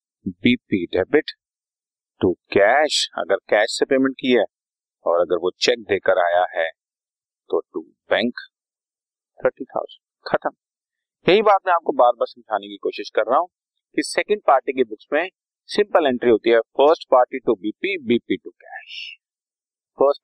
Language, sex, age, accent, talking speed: Hindi, male, 40-59, native, 155 wpm